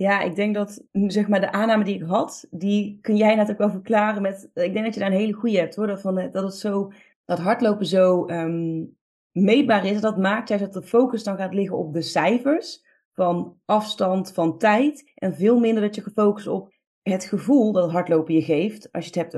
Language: Dutch